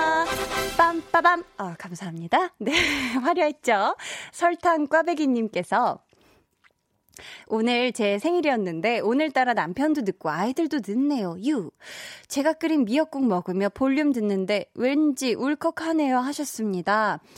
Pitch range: 205-305 Hz